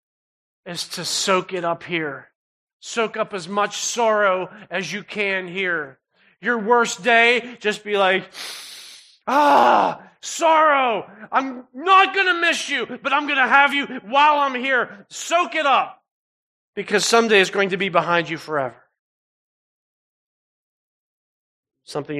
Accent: American